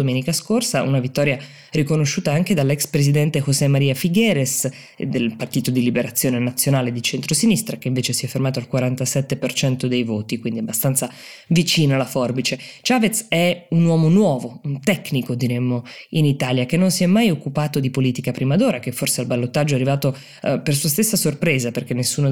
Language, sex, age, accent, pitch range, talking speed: Italian, female, 20-39, native, 125-150 Hz, 175 wpm